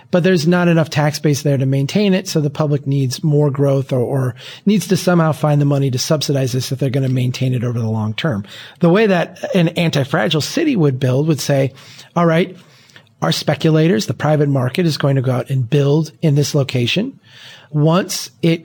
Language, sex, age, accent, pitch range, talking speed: English, male, 40-59, American, 135-170 Hz, 210 wpm